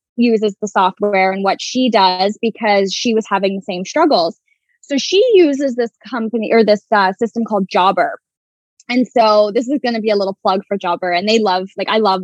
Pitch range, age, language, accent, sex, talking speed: 195-250 Hz, 10-29, English, American, female, 210 wpm